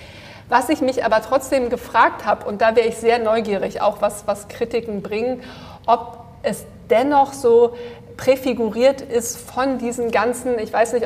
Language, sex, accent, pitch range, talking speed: German, female, German, 215-255 Hz, 165 wpm